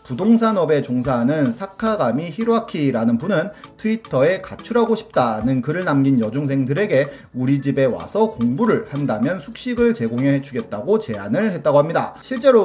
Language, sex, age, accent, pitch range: Korean, male, 30-49, native, 130-225 Hz